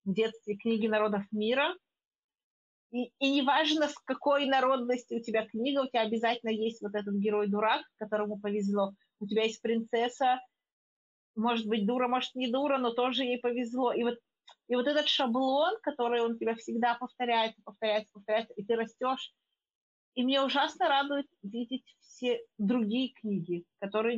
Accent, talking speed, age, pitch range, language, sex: native, 155 wpm, 30-49, 215-255 Hz, Russian, female